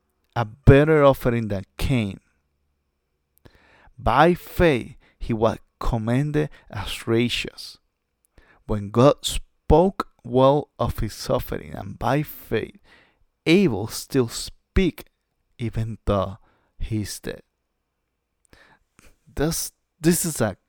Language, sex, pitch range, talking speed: English, male, 95-135 Hz, 100 wpm